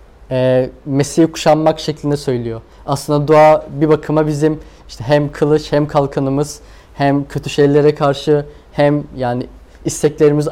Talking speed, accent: 120 wpm, native